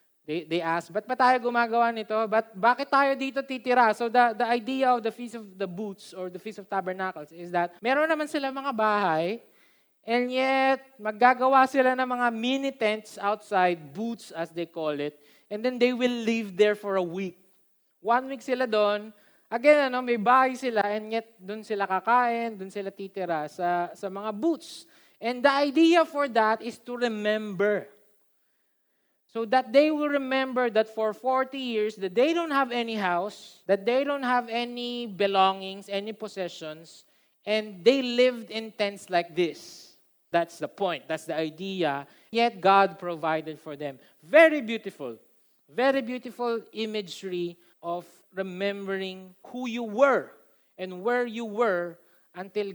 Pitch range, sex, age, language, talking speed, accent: 185-250 Hz, male, 20-39, Filipino, 165 wpm, native